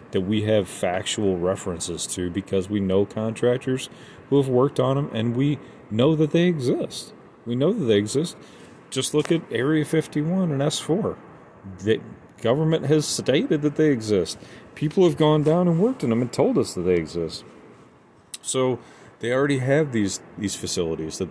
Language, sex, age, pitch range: English, male, 30-49, 95-120 Hz